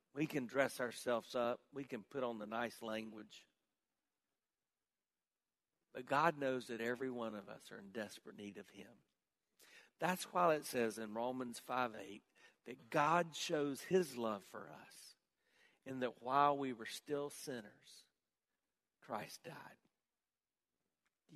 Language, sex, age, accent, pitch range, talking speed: English, male, 60-79, American, 125-175 Hz, 140 wpm